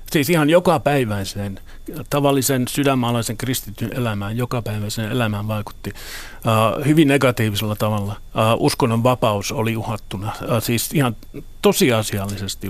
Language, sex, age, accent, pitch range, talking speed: Finnish, male, 50-69, native, 105-130 Hz, 90 wpm